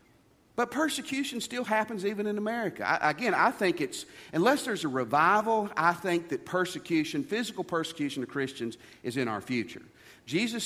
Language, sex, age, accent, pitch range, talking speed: English, male, 50-69, American, 145-235 Hz, 160 wpm